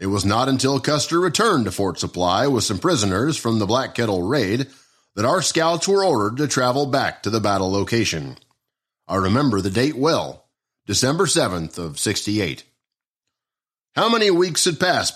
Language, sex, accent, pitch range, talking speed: English, male, American, 100-155 Hz, 170 wpm